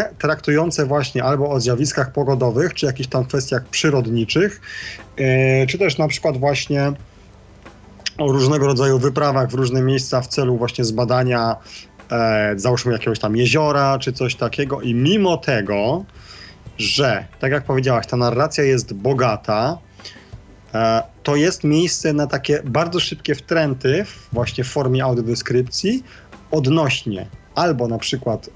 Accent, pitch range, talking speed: native, 120-145 Hz, 130 wpm